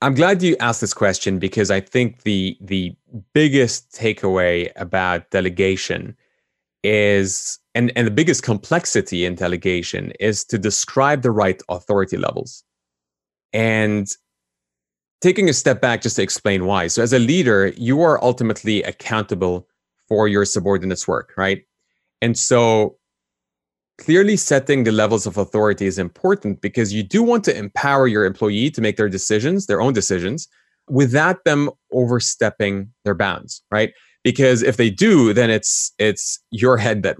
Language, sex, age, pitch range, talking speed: English, male, 30-49, 95-125 Hz, 150 wpm